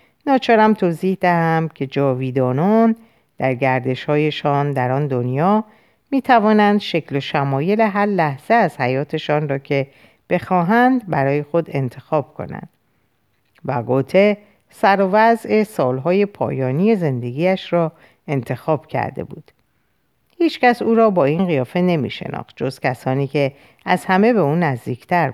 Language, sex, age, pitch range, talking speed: Persian, female, 50-69, 140-205 Hz, 120 wpm